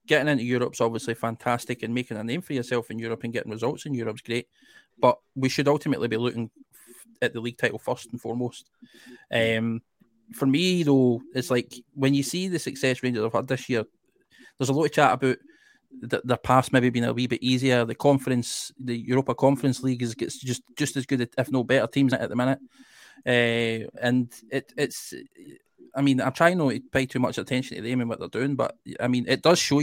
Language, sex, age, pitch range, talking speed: English, male, 20-39, 120-145 Hz, 225 wpm